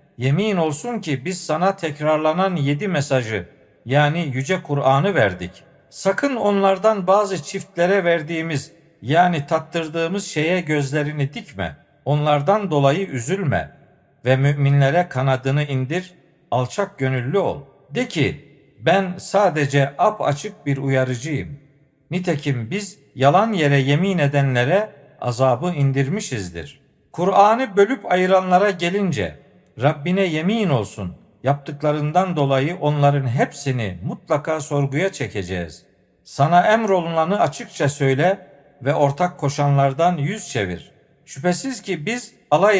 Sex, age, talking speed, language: male, 50-69, 105 wpm, Turkish